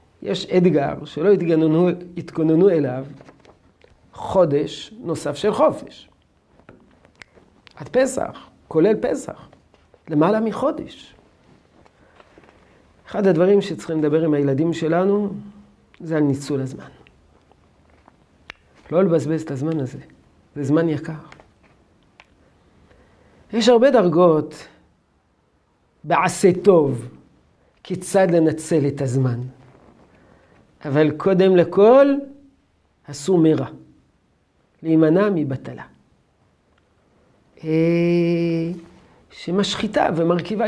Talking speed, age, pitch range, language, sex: 80 wpm, 50-69, 140-190 Hz, Hebrew, male